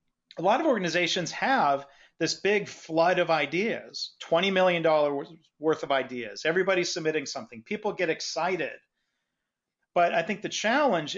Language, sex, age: English, male, 40-59